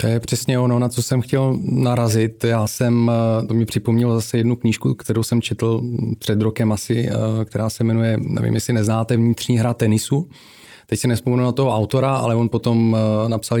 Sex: male